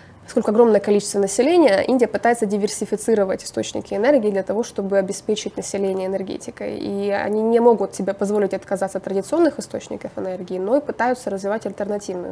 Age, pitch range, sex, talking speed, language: 20-39, 195-225 Hz, female, 150 wpm, Russian